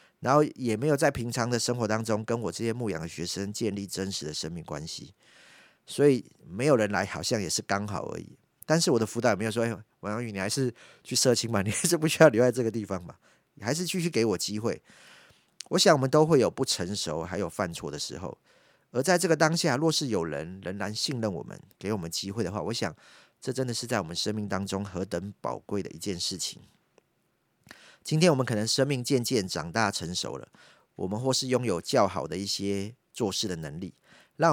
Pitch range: 100-130 Hz